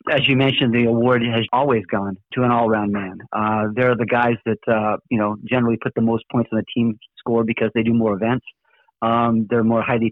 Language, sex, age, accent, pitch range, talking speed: English, male, 40-59, American, 115-135 Hz, 225 wpm